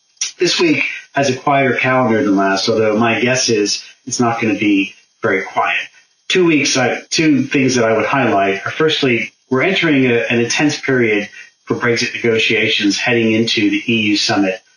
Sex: male